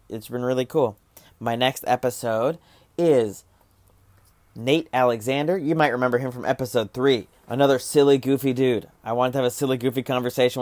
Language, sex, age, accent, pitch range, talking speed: English, male, 30-49, American, 110-150 Hz, 165 wpm